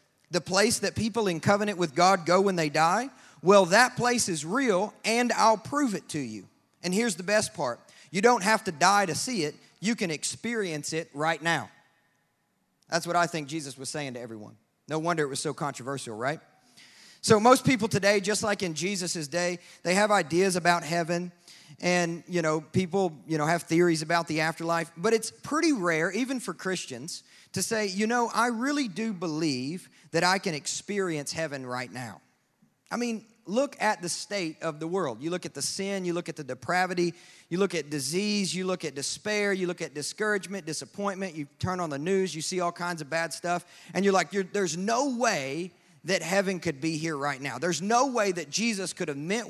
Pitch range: 160-200 Hz